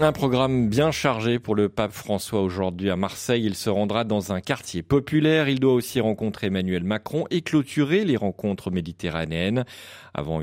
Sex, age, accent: male, 40-59, French